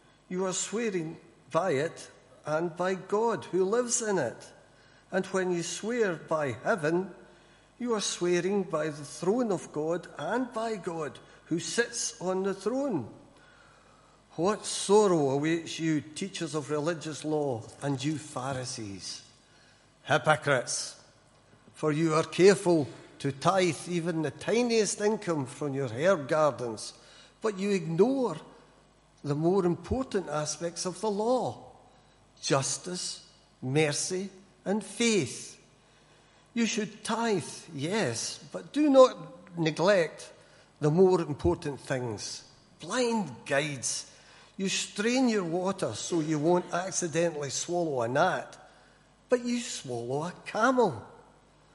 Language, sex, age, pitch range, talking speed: English, male, 60-79, 145-195 Hz, 120 wpm